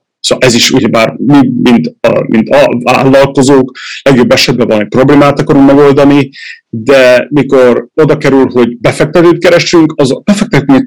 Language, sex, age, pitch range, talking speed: Hungarian, male, 30-49, 120-150 Hz, 150 wpm